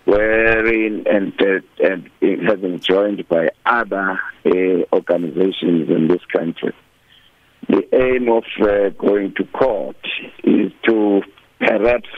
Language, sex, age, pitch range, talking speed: English, male, 60-79, 95-110 Hz, 125 wpm